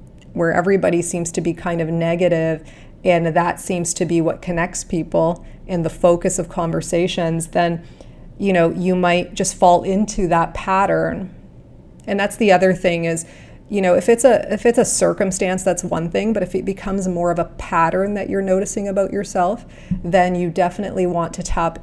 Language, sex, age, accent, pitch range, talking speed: English, female, 30-49, American, 170-195 Hz, 185 wpm